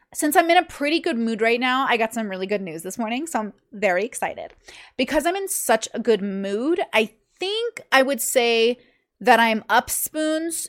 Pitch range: 210-260 Hz